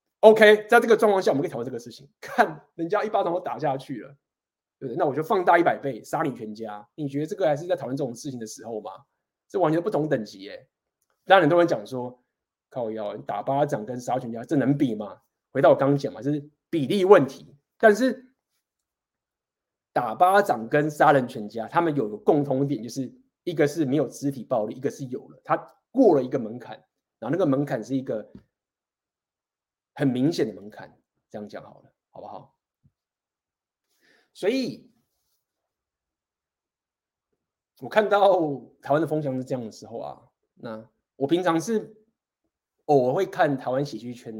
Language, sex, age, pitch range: Chinese, male, 20-39, 125-165 Hz